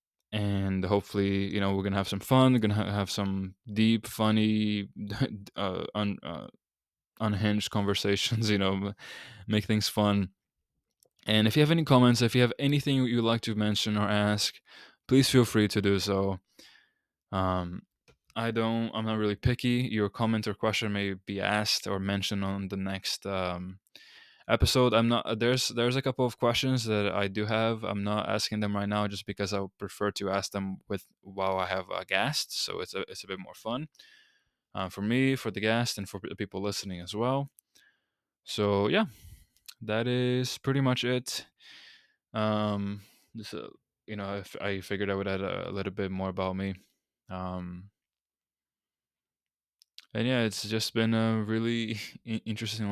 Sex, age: male, 20-39